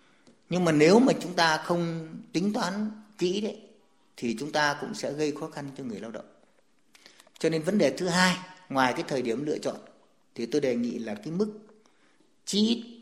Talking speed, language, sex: 200 wpm, Vietnamese, male